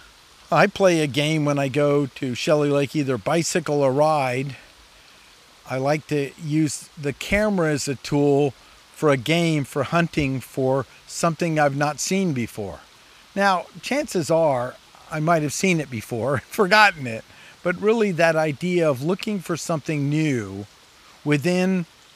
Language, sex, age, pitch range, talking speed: English, male, 50-69, 135-170 Hz, 150 wpm